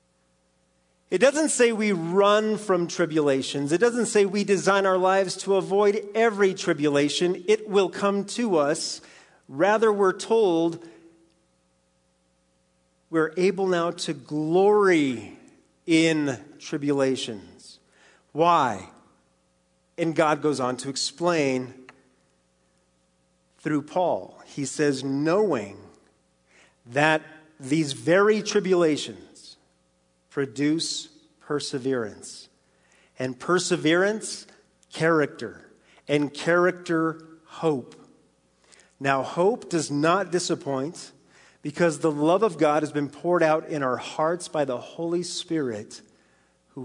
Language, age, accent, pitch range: English, 40-59, American, 125-185 Hz